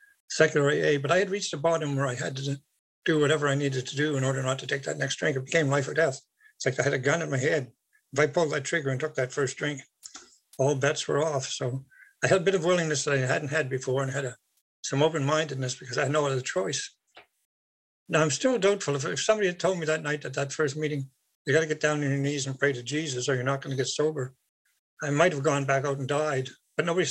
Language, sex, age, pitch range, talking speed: English, male, 60-79, 135-160 Hz, 270 wpm